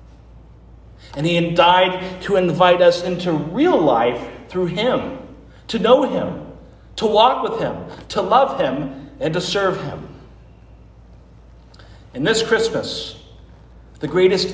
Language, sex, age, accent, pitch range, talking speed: English, male, 50-69, American, 140-190 Hz, 130 wpm